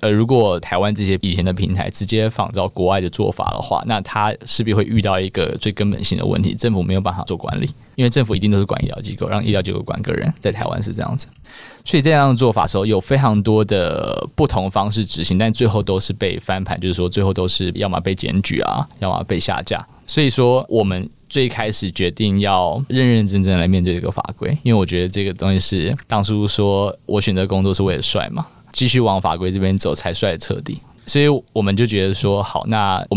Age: 20-39